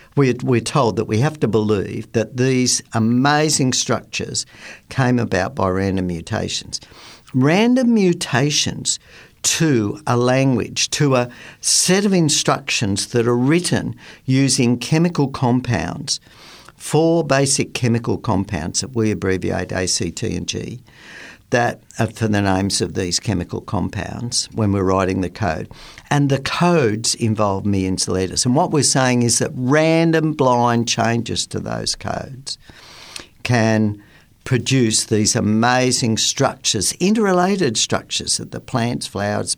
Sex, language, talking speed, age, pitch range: male, English, 130 wpm, 50-69, 100-135 Hz